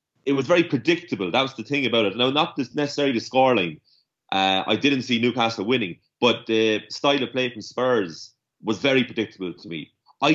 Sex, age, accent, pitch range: male, 30-49, Irish, 110-130 Hz